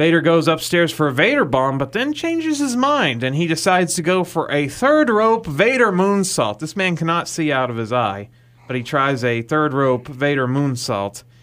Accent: American